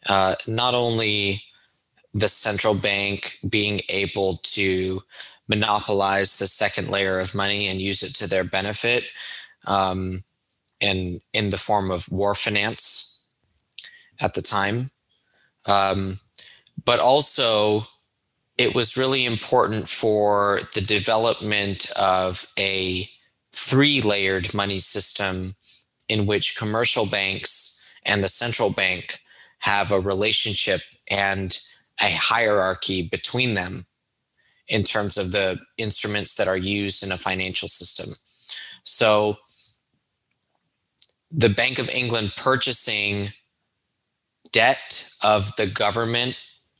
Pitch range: 95-110 Hz